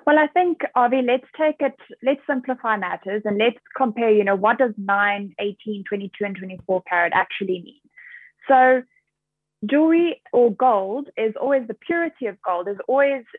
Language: English